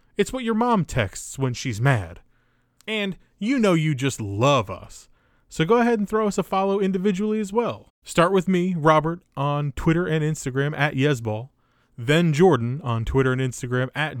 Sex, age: male, 20-39